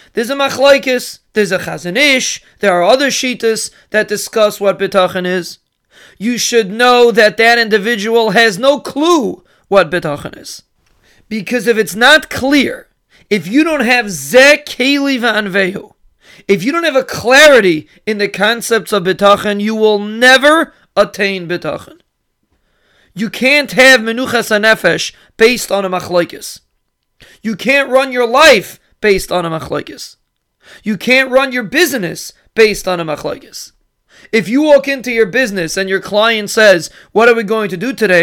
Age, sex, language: 40-59, male, English